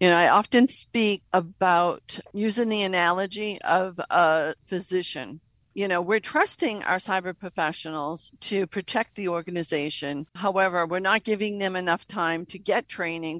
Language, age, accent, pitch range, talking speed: English, 50-69, American, 170-215 Hz, 150 wpm